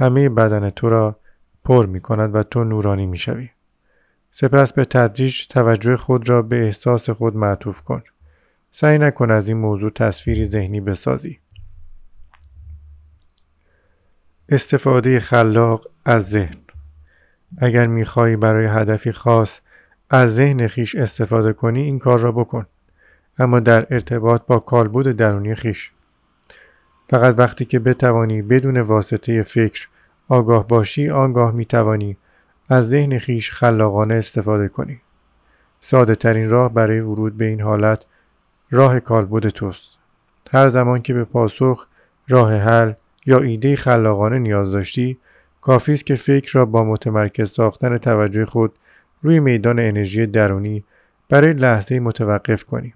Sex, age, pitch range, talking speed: male, 50-69, 105-125 Hz, 130 wpm